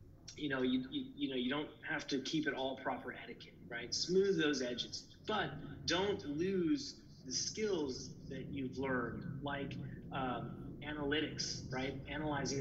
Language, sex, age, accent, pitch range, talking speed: English, male, 30-49, American, 125-150 Hz, 150 wpm